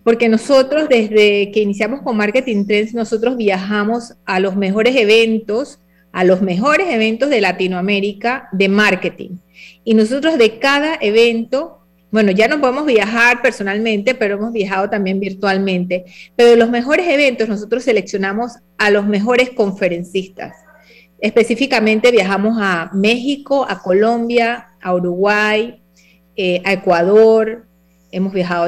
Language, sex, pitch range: Spanish, female, 195-250 Hz